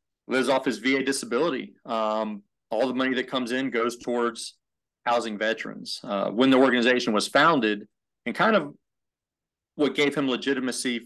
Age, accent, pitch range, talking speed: 40-59, American, 110-130 Hz, 155 wpm